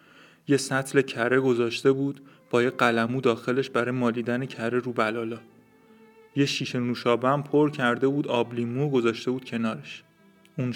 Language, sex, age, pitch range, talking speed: Persian, male, 30-49, 120-140 Hz, 140 wpm